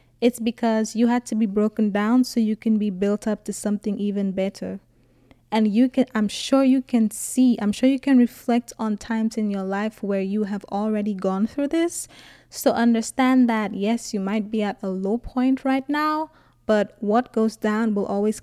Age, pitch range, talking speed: 20-39, 210-260 Hz, 200 wpm